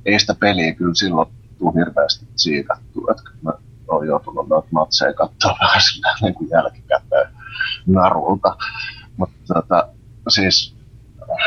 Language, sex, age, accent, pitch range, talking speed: Finnish, male, 30-49, native, 100-120 Hz, 110 wpm